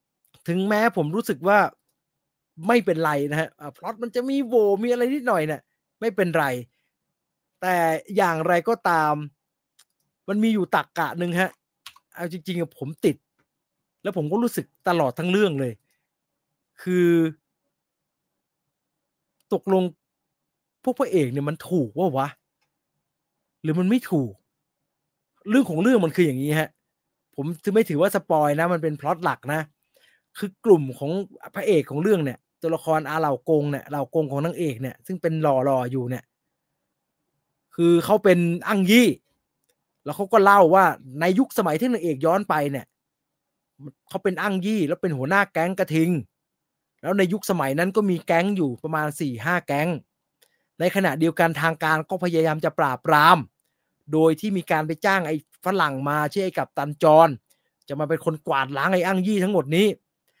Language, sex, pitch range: English, male, 150-195 Hz